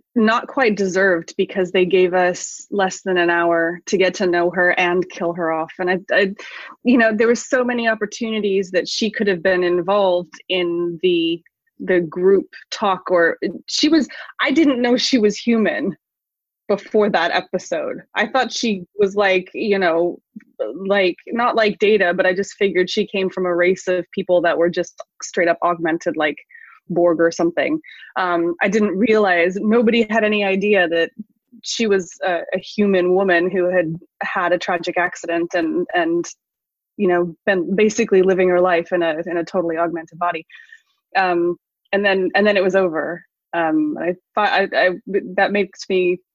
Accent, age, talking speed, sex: American, 20-39, 175 wpm, female